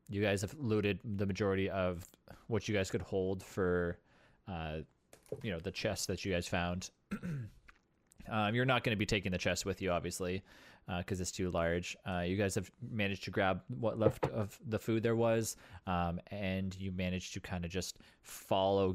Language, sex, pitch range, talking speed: English, male, 90-115 Hz, 195 wpm